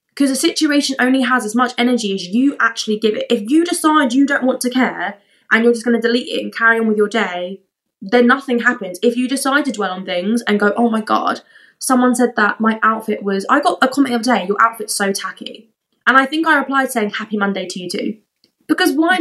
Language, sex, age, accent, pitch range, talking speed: English, female, 20-39, British, 205-265 Hz, 245 wpm